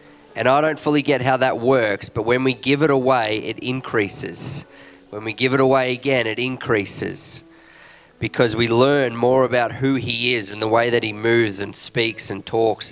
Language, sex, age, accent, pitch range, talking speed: English, male, 20-39, Australian, 110-135 Hz, 195 wpm